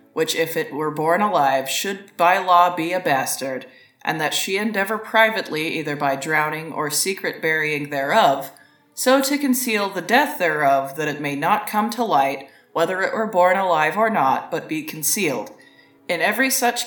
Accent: American